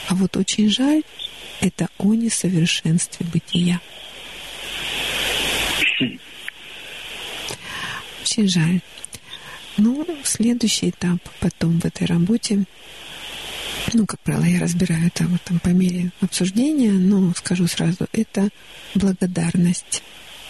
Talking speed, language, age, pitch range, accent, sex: 90 wpm, Russian, 50-69, 170-205 Hz, native, female